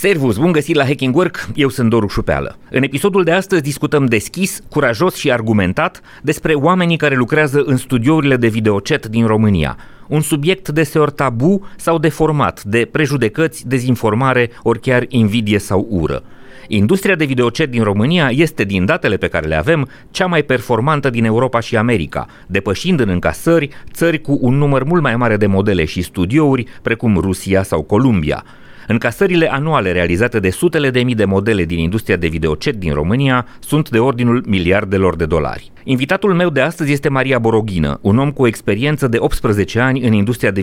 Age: 30-49